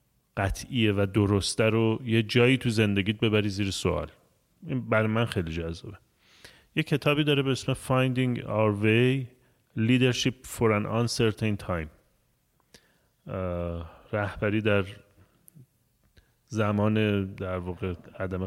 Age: 30-49